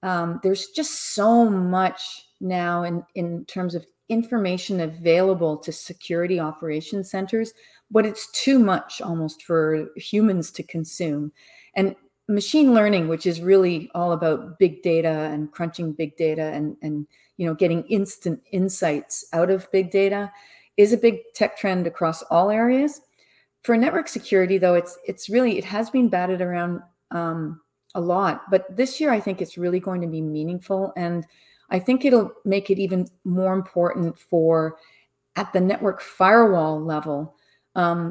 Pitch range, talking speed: 165-200 Hz, 155 wpm